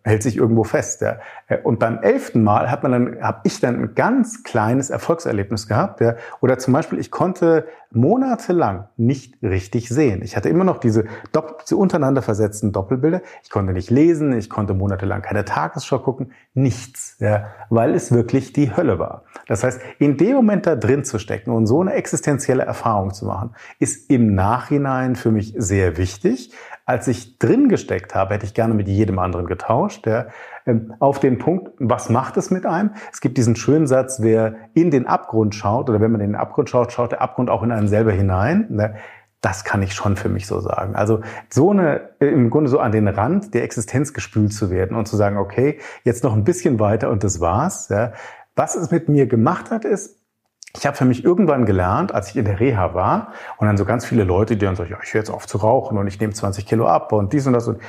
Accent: German